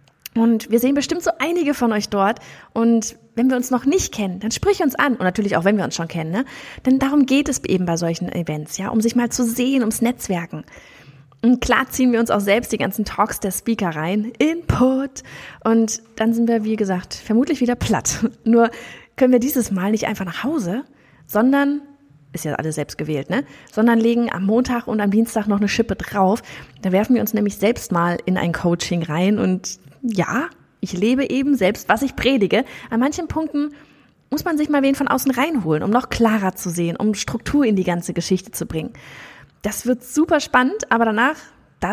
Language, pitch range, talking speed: German, 200-255 Hz, 210 wpm